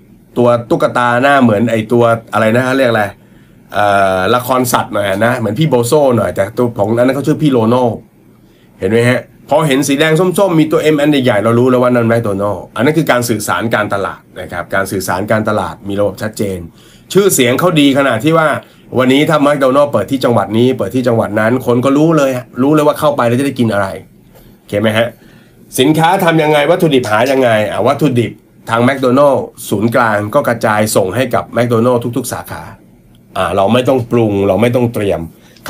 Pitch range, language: 110-140 Hz, Thai